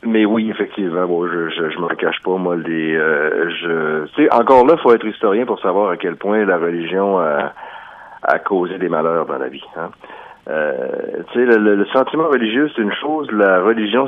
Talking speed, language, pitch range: 200 wpm, French, 95-140 Hz